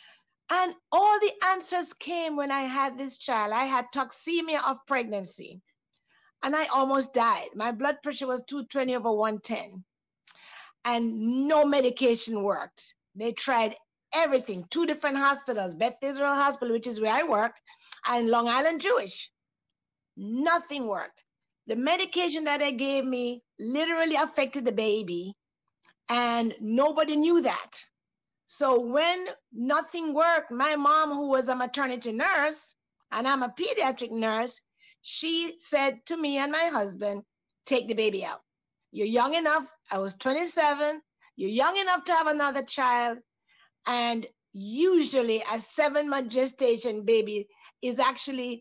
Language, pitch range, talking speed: English, 235-310 Hz, 140 wpm